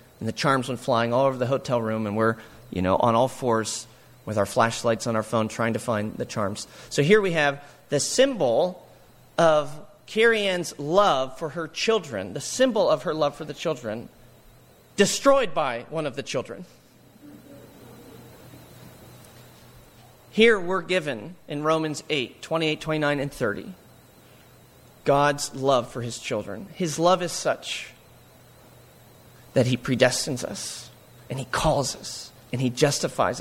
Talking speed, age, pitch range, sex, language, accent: 150 wpm, 30-49, 120-160 Hz, male, English, American